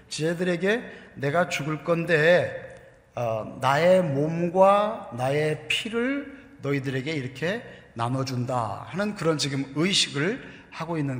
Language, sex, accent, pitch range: Korean, male, native, 120-165 Hz